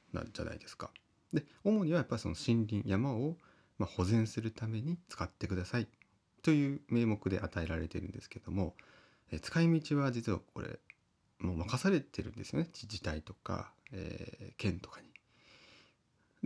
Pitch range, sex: 90-120 Hz, male